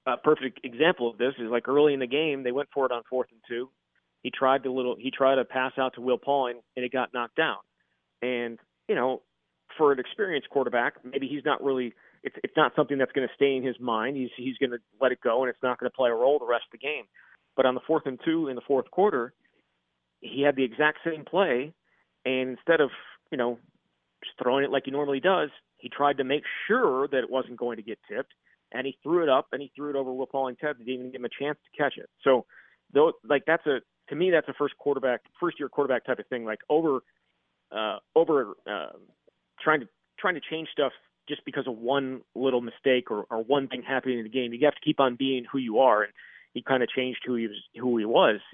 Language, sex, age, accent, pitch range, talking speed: English, male, 40-59, American, 120-140 Hz, 250 wpm